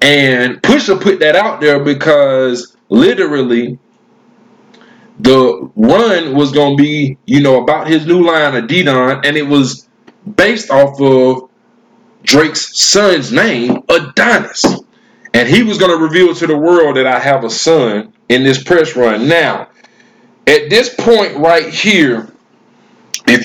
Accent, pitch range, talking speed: American, 130-195 Hz, 145 wpm